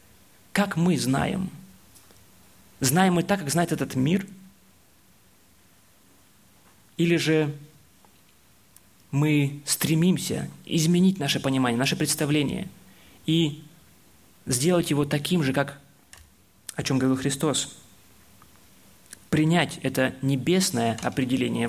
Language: Russian